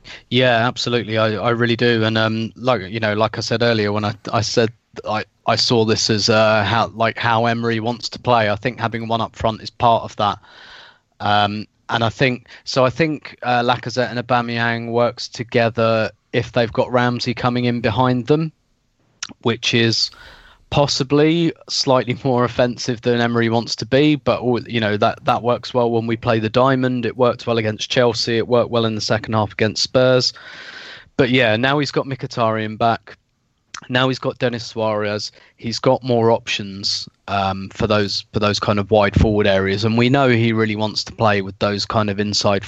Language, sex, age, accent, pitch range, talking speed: English, male, 20-39, British, 110-125 Hz, 195 wpm